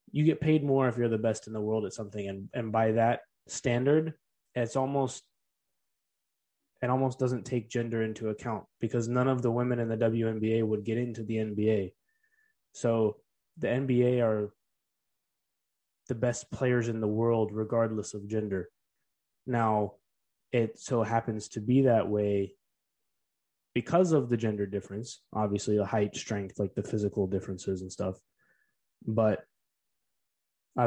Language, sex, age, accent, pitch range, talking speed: English, male, 20-39, American, 105-125 Hz, 150 wpm